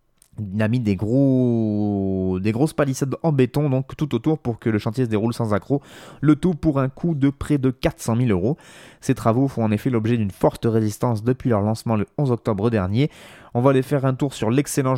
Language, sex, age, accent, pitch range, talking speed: French, male, 20-39, French, 105-130 Hz, 225 wpm